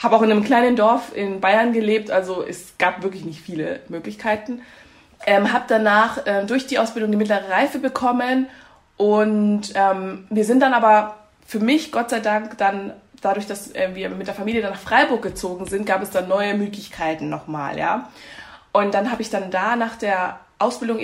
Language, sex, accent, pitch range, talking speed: German, female, German, 190-230 Hz, 190 wpm